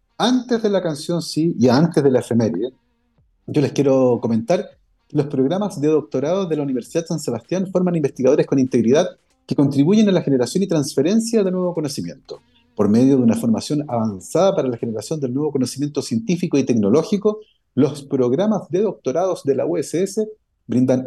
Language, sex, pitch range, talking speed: Spanish, male, 140-205 Hz, 175 wpm